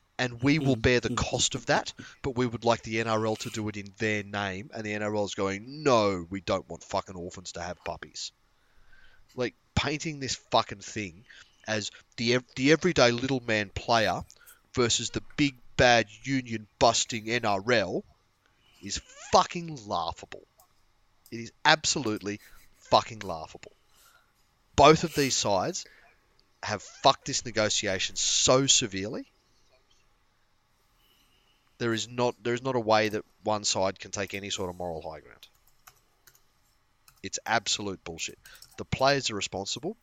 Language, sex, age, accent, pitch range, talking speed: English, male, 30-49, Australian, 100-120 Hz, 145 wpm